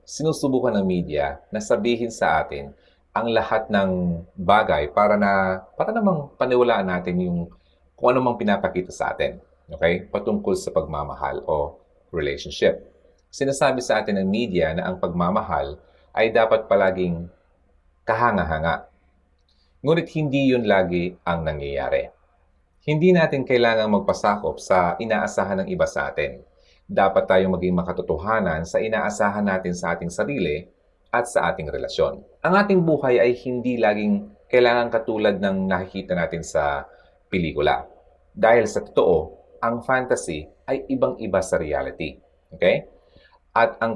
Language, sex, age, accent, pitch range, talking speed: Filipino, male, 30-49, native, 80-120 Hz, 130 wpm